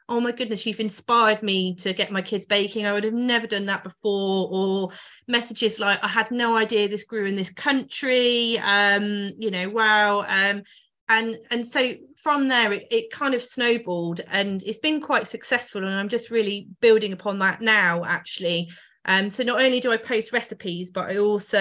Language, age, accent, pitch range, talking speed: English, 30-49, British, 185-225 Hz, 195 wpm